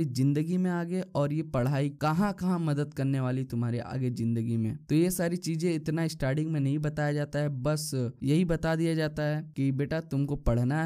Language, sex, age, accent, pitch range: Hindi, male, 10-29, native, 135-165 Hz